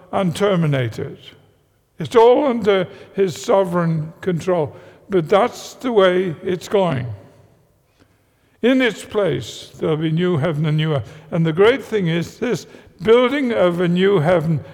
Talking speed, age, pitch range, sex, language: 145 wpm, 60-79, 165-205 Hz, male, English